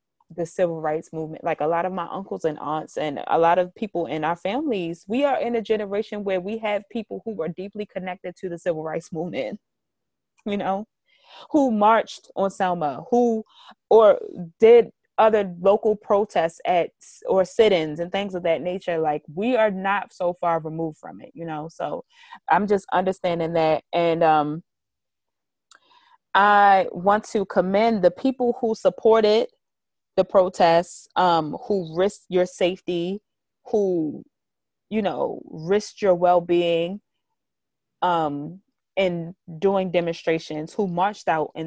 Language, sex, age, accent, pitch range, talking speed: English, female, 20-39, American, 170-215 Hz, 150 wpm